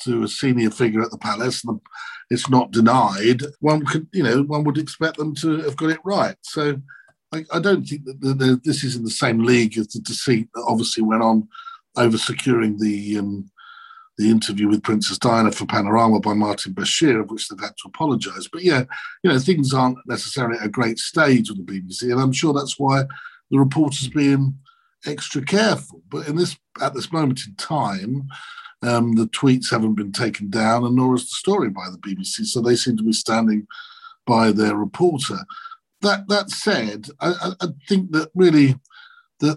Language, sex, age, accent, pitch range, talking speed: English, male, 50-69, British, 115-165 Hz, 200 wpm